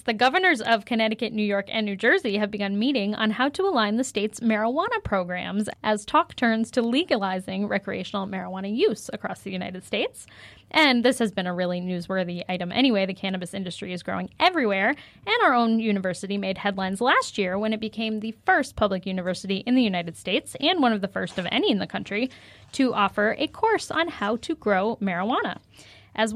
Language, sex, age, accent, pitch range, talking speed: English, female, 10-29, American, 200-250 Hz, 195 wpm